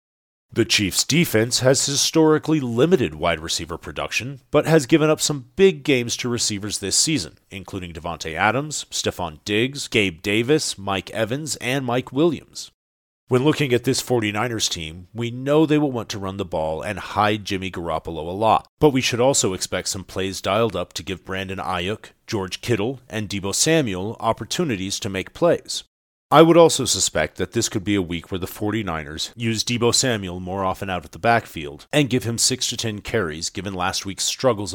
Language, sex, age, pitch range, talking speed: English, male, 40-59, 90-120 Hz, 185 wpm